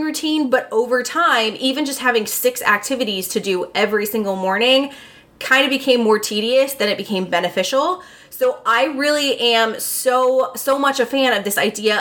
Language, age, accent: English, 20-39, American